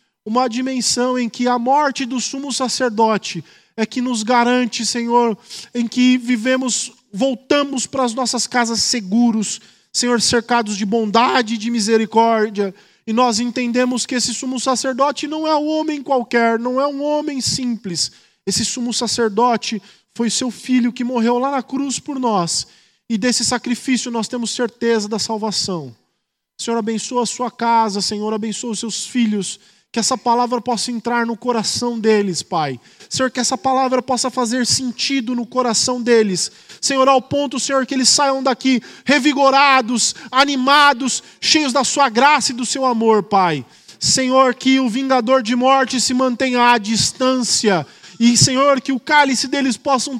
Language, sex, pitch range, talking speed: Portuguese, male, 225-260 Hz, 160 wpm